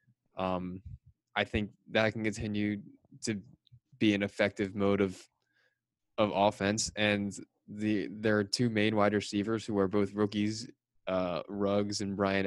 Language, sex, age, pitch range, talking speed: English, male, 20-39, 100-110 Hz, 145 wpm